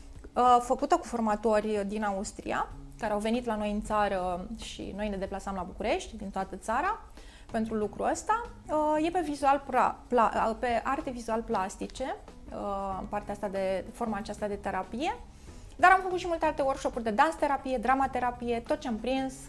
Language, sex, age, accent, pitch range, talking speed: Romanian, female, 20-39, native, 210-260 Hz, 180 wpm